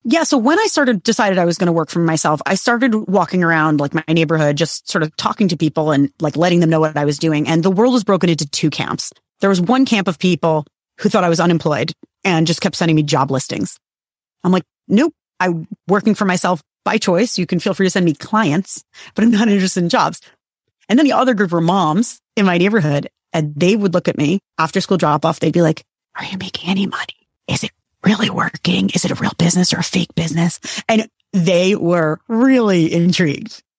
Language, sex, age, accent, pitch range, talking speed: English, female, 30-49, American, 165-215 Hz, 230 wpm